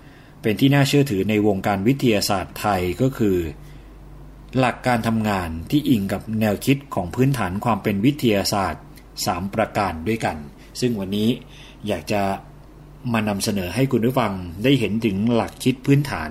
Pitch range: 100-130 Hz